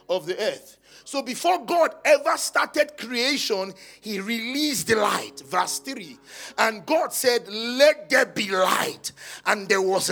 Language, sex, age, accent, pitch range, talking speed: English, male, 50-69, Nigerian, 175-275 Hz, 150 wpm